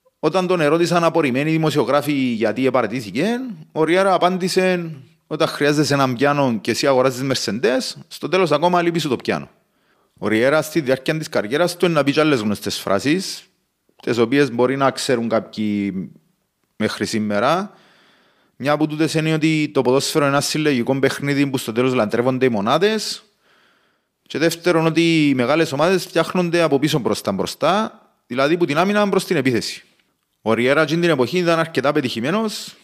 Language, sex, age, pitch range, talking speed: Greek, male, 30-49, 120-165 Hz, 155 wpm